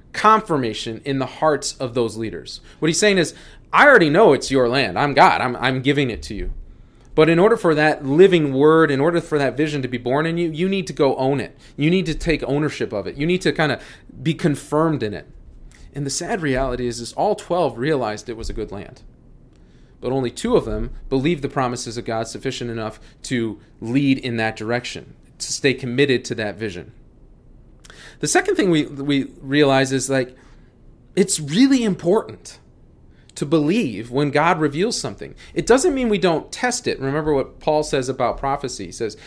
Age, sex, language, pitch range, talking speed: 30-49, male, English, 125-165 Hz, 205 wpm